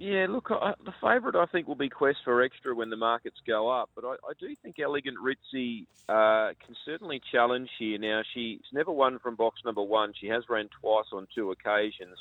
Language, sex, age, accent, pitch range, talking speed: English, male, 30-49, Australian, 105-125 Hz, 210 wpm